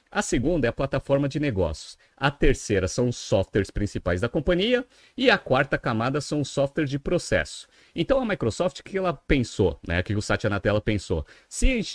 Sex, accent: male, Brazilian